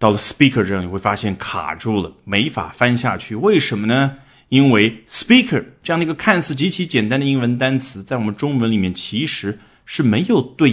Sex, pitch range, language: male, 95-135 Hz, Chinese